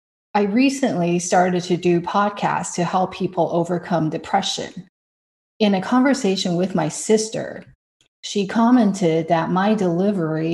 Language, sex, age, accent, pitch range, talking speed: English, female, 30-49, American, 170-210 Hz, 125 wpm